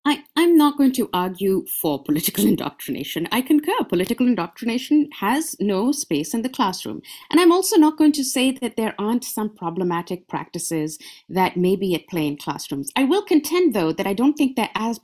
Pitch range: 185-285 Hz